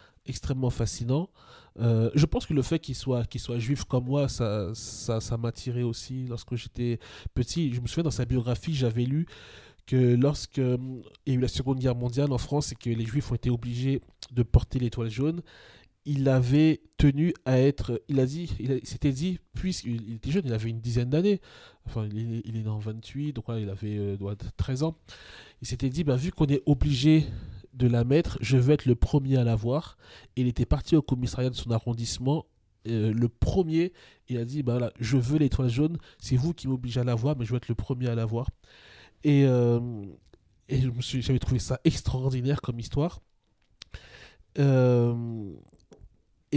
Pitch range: 115-140 Hz